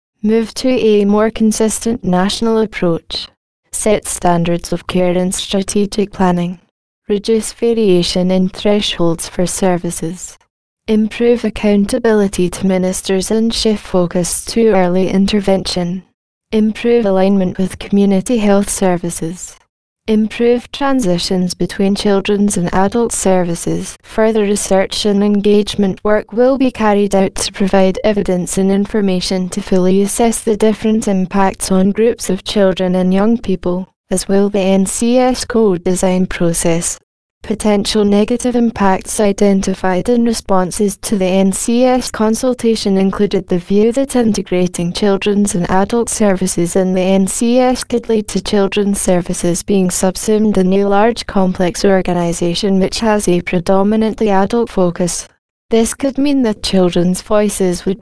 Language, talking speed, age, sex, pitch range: English, 130 wpm, 20-39, female, 185-220 Hz